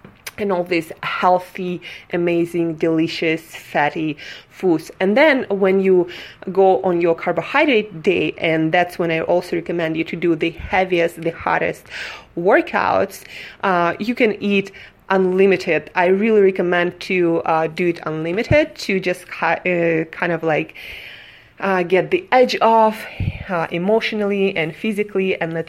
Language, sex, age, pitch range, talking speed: English, female, 20-39, 165-195 Hz, 140 wpm